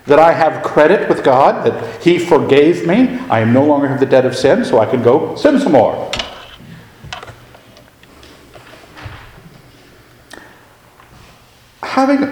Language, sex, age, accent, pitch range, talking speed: English, male, 50-69, American, 125-170 Hz, 125 wpm